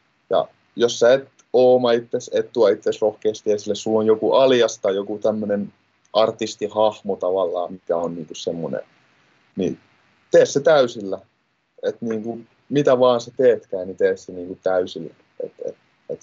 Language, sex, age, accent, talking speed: Finnish, male, 20-39, native, 155 wpm